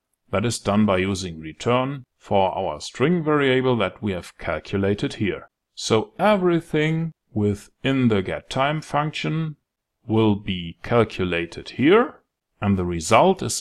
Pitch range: 100-145 Hz